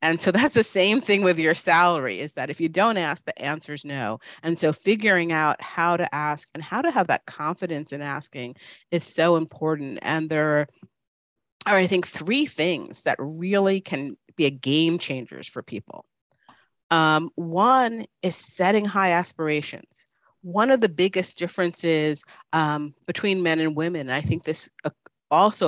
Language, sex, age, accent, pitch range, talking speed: English, female, 40-59, American, 150-190 Hz, 170 wpm